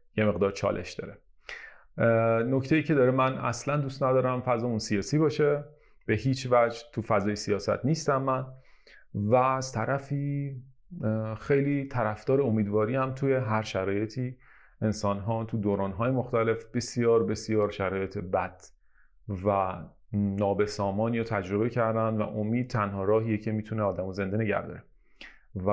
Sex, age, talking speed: male, 30-49, 135 wpm